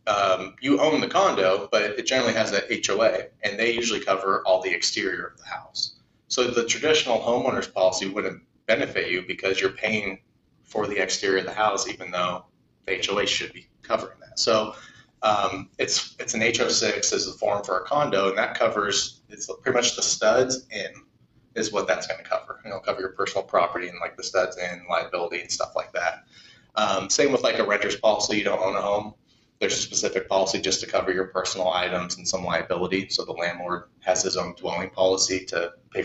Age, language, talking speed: 30-49, English, 210 wpm